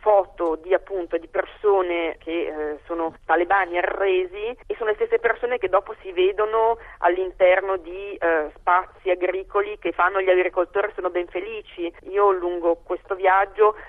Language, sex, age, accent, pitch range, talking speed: Italian, female, 40-59, native, 180-215 Hz, 150 wpm